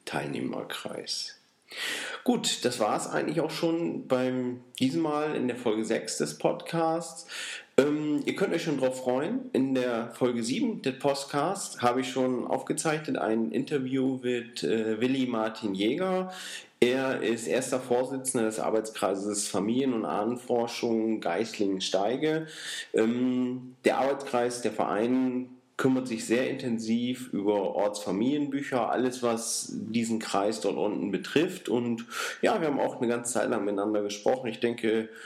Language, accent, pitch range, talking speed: German, German, 110-130 Hz, 140 wpm